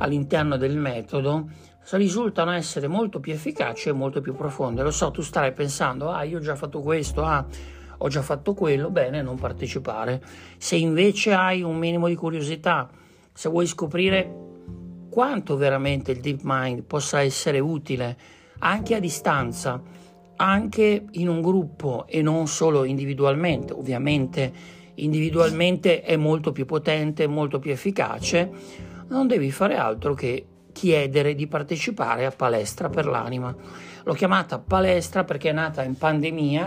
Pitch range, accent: 135-170 Hz, native